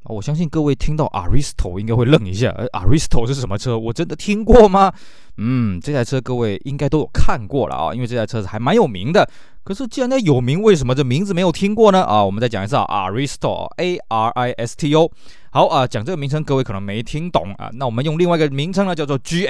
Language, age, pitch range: Chinese, 20-39, 110-155 Hz